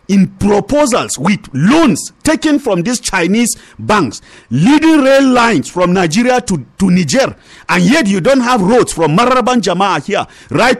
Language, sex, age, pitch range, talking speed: English, male, 50-69, 195-295 Hz, 155 wpm